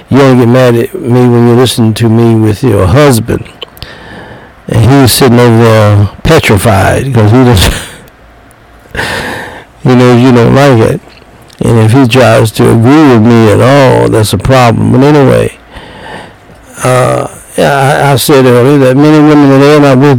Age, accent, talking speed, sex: 60-79, American, 170 wpm, male